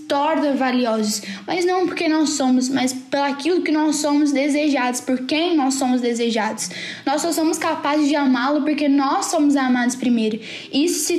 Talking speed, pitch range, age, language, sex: 170 wpm, 265-320 Hz, 10-29, Portuguese, female